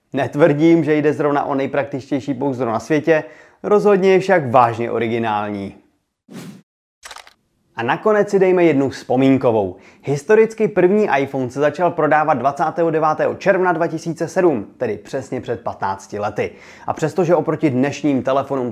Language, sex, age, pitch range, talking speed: Czech, male, 30-49, 135-175 Hz, 125 wpm